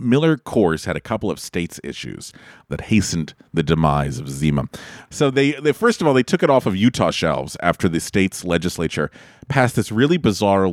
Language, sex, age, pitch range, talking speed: English, male, 40-59, 85-115 Hz, 195 wpm